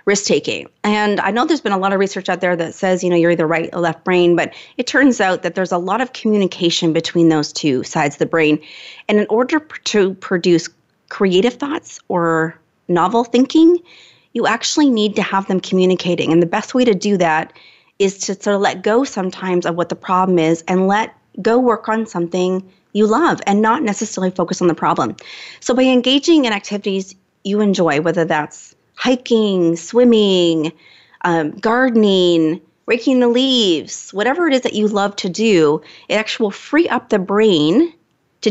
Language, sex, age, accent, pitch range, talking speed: English, female, 30-49, American, 175-230 Hz, 190 wpm